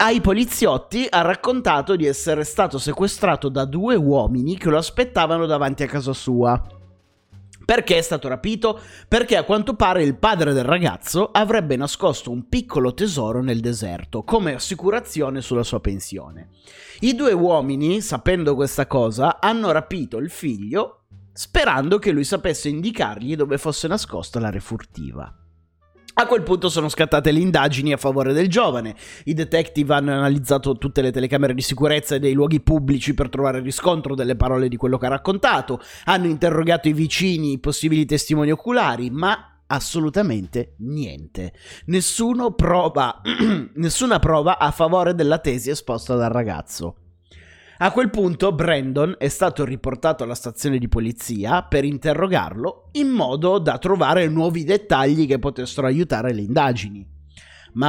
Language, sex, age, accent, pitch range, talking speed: Italian, male, 30-49, native, 125-170 Hz, 145 wpm